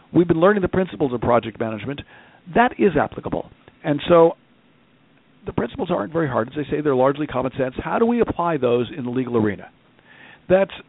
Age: 50-69